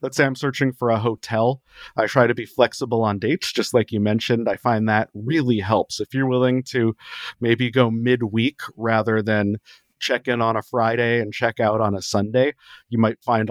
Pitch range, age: 105-125 Hz, 40-59